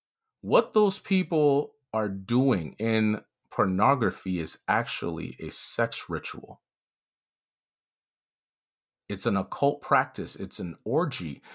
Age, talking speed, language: 40-59, 100 wpm, English